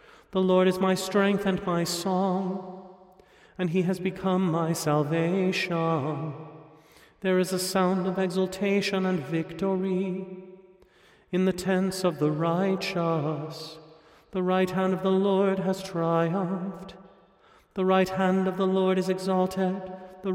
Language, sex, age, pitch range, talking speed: English, male, 40-59, 170-190 Hz, 135 wpm